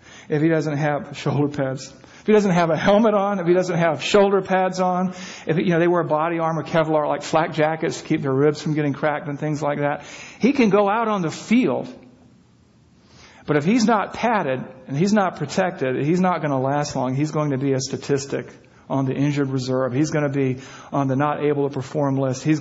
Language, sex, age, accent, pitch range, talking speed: English, male, 50-69, American, 135-180 Hz, 230 wpm